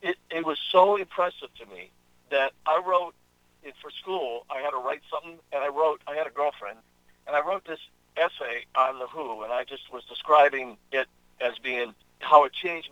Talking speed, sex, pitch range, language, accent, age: 205 wpm, male, 125-185 Hz, English, American, 50-69